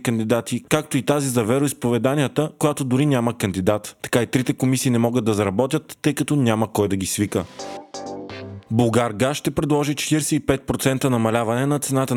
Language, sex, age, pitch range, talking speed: Bulgarian, male, 20-39, 110-140 Hz, 165 wpm